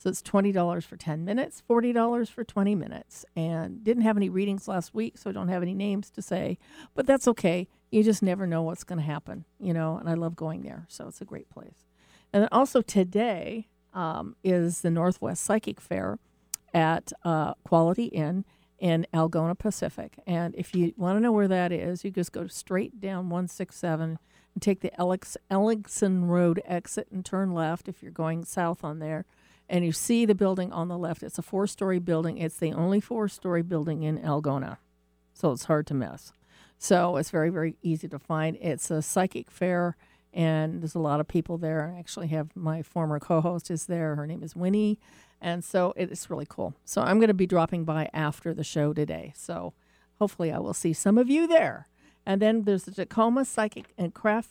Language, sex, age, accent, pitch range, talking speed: English, female, 50-69, American, 165-200 Hz, 200 wpm